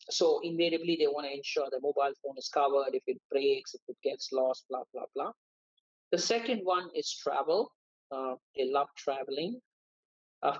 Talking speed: 175 wpm